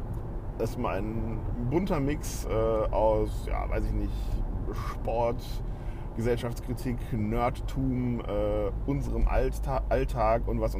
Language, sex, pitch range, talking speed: German, male, 100-120 Hz, 110 wpm